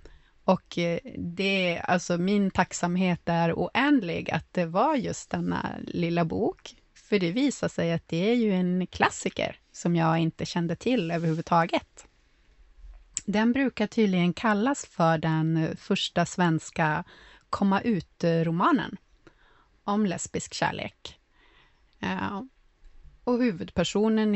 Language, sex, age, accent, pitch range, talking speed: Swedish, female, 30-49, native, 170-220 Hz, 115 wpm